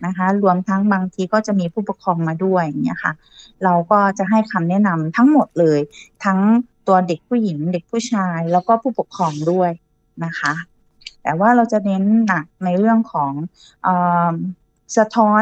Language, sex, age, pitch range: Thai, female, 20-39, 170-220 Hz